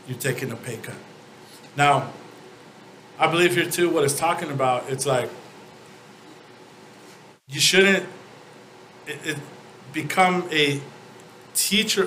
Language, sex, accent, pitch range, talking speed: English, male, American, 130-165 Hz, 105 wpm